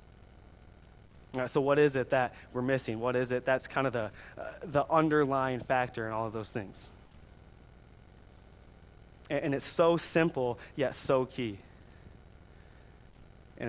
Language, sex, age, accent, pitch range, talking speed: English, male, 20-39, American, 120-150 Hz, 145 wpm